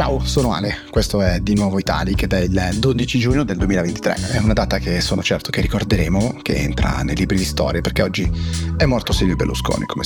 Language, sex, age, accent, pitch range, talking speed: Italian, male, 30-49, native, 95-120 Hz, 205 wpm